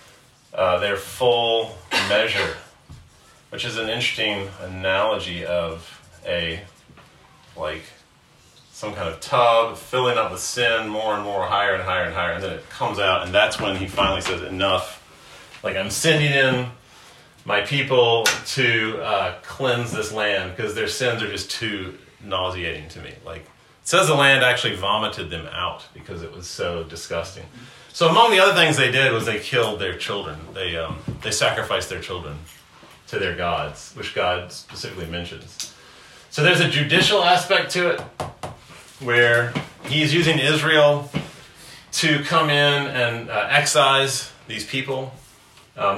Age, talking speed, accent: 30-49, 155 wpm, American